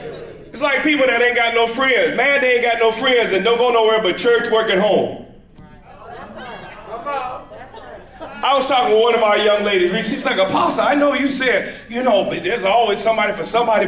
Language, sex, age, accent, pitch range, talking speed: English, male, 40-59, American, 235-310 Hz, 205 wpm